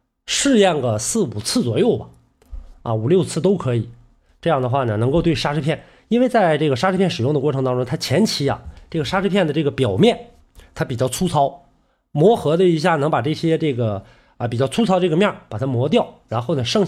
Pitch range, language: 130-195 Hz, Chinese